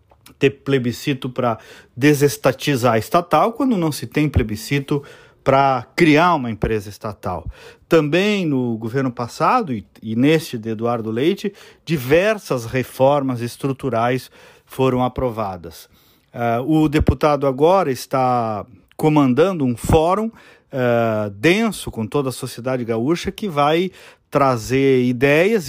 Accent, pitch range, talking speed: Brazilian, 130-175 Hz, 115 wpm